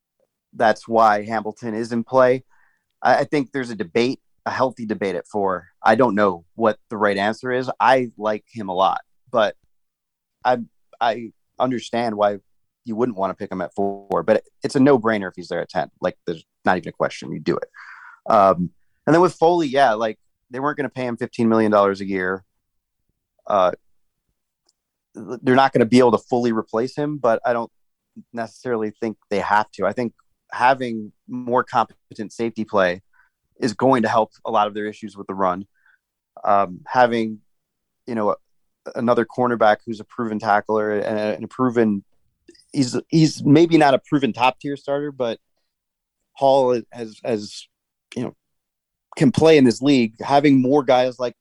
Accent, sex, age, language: American, male, 30-49, English